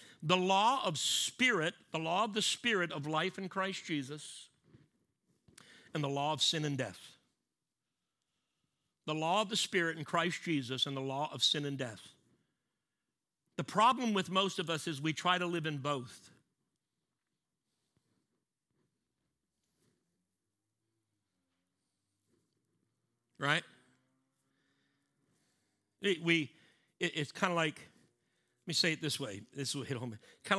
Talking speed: 130 wpm